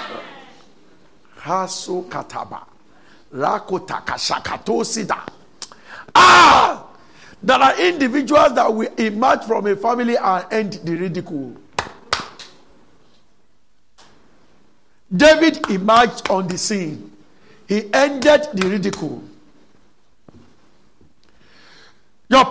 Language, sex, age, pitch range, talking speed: English, male, 60-79, 185-270 Hz, 65 wpm